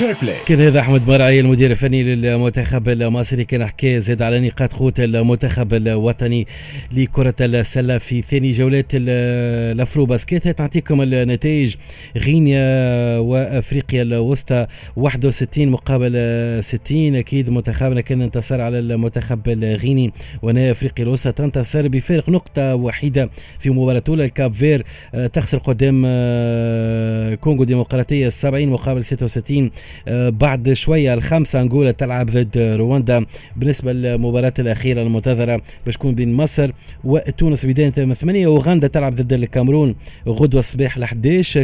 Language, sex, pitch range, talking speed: Arabic, male, 120-135 Hz, 115 wpm